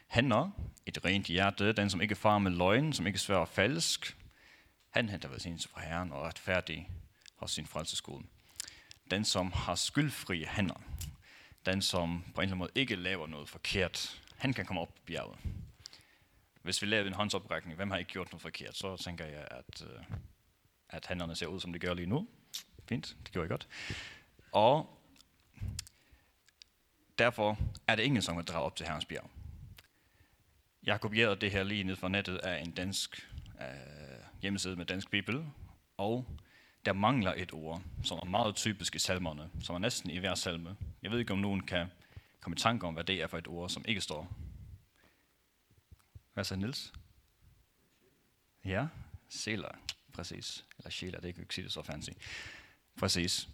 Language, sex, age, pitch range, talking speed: Danish, male, 30-49, 85-105 Hz, 175 wpm